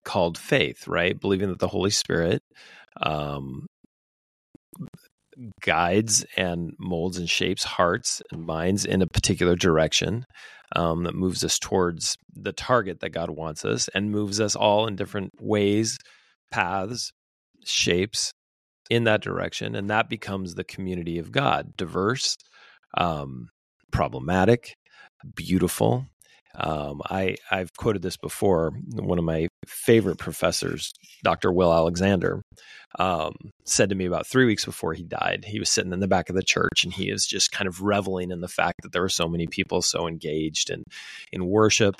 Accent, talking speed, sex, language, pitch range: American, 155 wpm, male, English, 85-105 Hz